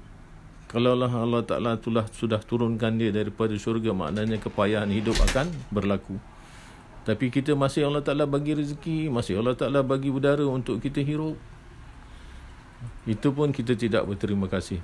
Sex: male